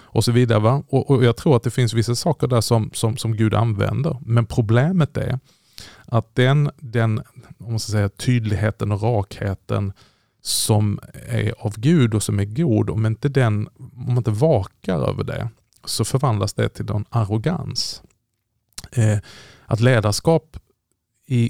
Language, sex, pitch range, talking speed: Swedish, male, 105-125 Hz, 165 wpm